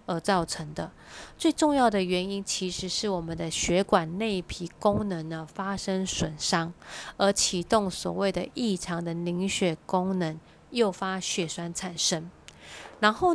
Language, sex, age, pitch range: Chinese, female, 30-49, 175-210 Hz